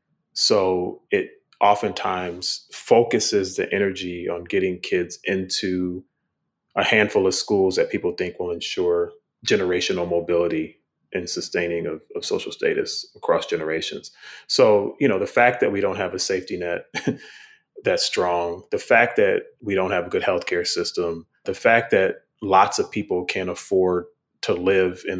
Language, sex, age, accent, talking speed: English, male, 30-49, American, 150 wpm